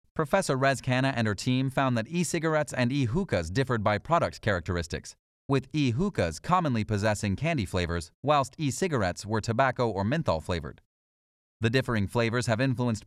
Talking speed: 160 wpm